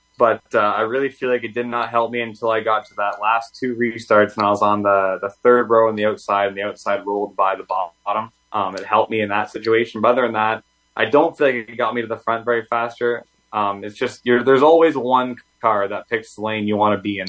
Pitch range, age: 100-120 Hz, 20-39